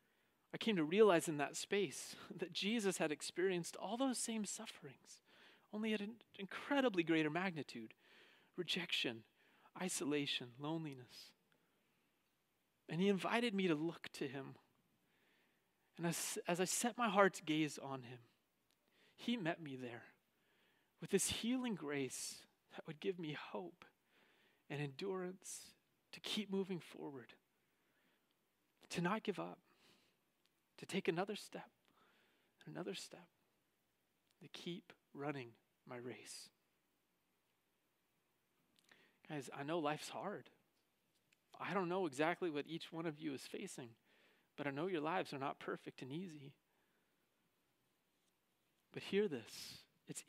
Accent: American